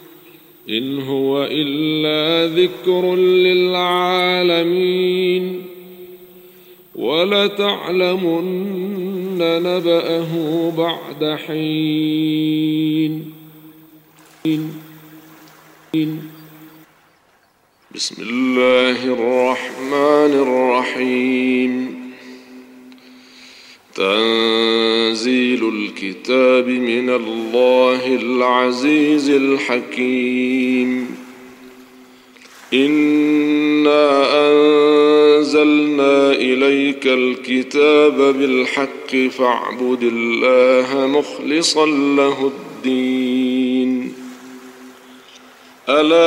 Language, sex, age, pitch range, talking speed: Arabic, male, 50-69, 125-155 Hz, 40 wpm